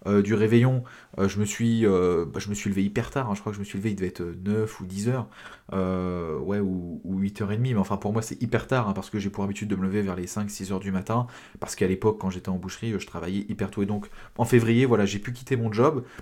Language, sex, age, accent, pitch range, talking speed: French, male, 20-39, French, 95-115 Hz, 290 wpm